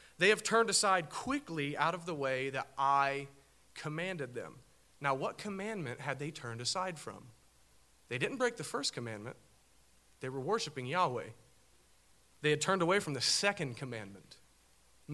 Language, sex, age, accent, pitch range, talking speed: English, male, 40-59, American, 140-180 Hz, 160 wpm